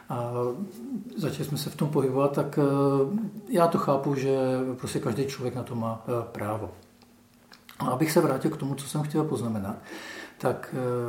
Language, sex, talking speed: Czech, male, 160 wpm